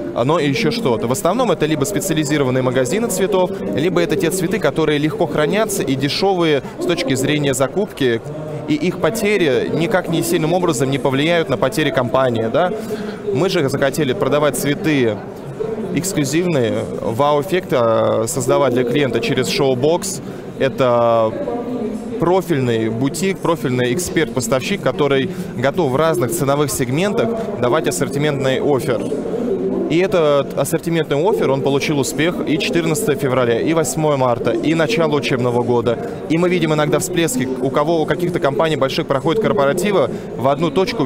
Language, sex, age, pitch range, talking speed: Russian, male, 20-39, 135-175 Hz, 140 wpm